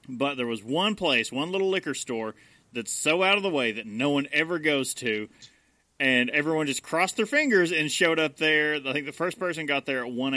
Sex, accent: male, American